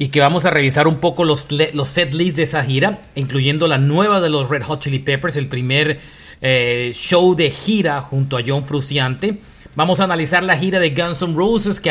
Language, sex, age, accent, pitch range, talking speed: Spanish, male, 40-59, Mexican, 145-180 Hz, 215 wpm